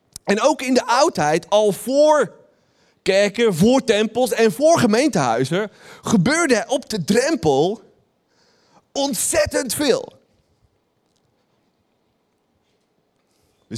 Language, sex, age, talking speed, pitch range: Dutch, male, 40-59, 85 wpm, 170-240 Hz